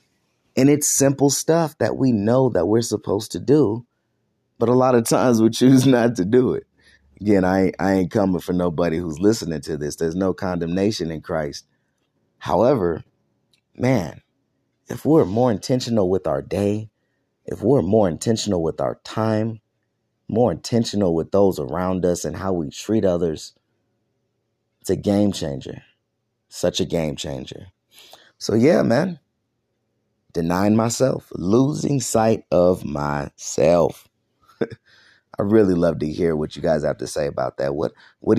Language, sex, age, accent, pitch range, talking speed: English, male, 30-49, American, 80-115 Hz, 155 wpm